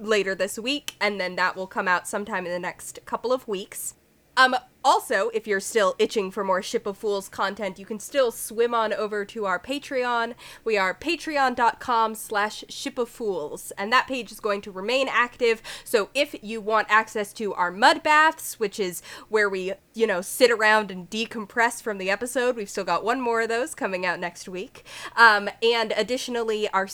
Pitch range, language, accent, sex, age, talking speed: 195-240 Hz, English, American, female, 20-39, 200 wpm